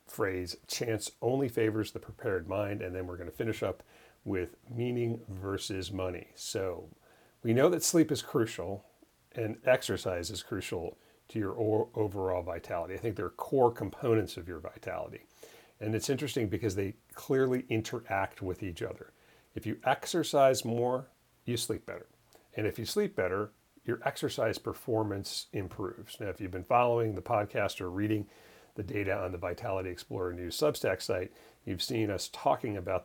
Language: English